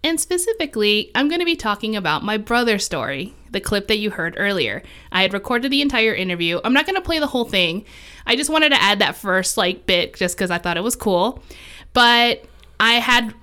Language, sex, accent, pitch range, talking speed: English, female, American, 185-265 Hz, 225 wpm